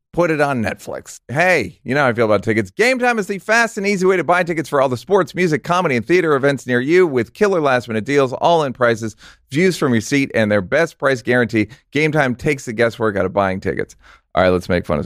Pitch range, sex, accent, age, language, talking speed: 95-135 Hz, male, American, 40-59, English, 260 wpm